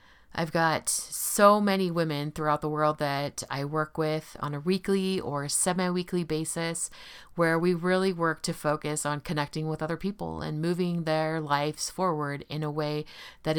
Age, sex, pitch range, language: 30-49, female, 150-185 Hz, English